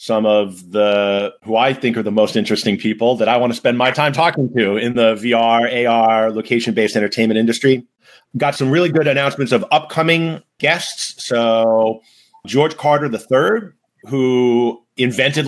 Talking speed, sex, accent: 160 wpm, male, American